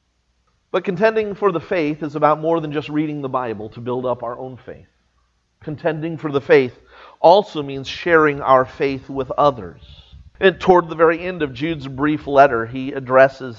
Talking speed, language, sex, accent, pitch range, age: 180 wpm, English, male, American, 120-155 Hz, 40-59